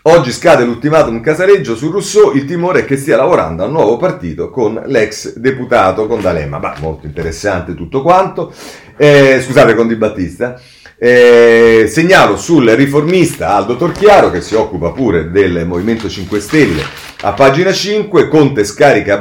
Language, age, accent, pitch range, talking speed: Italian, 40-59, native, 100-155 Hz, 155 wpm